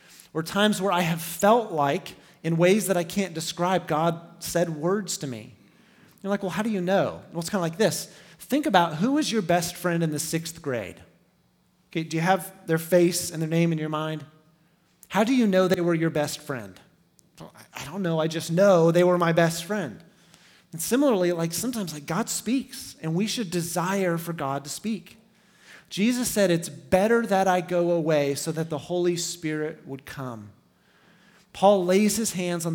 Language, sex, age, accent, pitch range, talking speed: English, male, 30-49, American, 160-190 Hz, 200 wpm